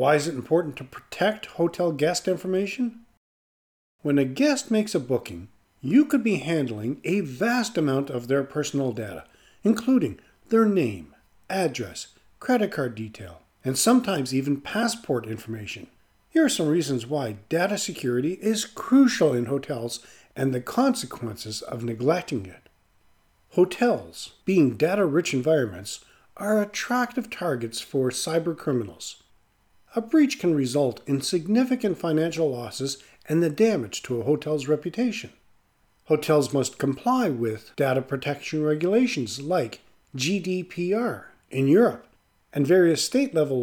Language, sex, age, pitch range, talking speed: English, male, 40-59, 125-190 Hz, 130 wpm